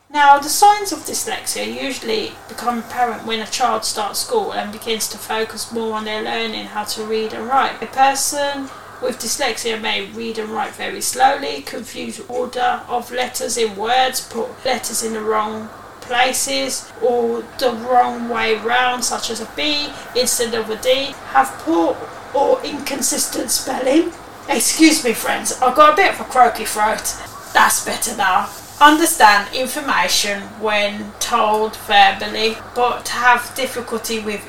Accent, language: British, English